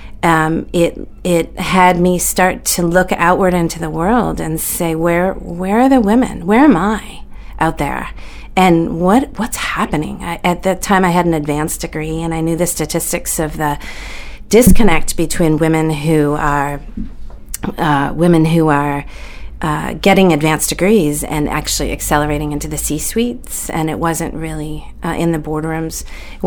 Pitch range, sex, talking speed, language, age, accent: 155-185 Hz, female, 160 wpm, English, 40-59, American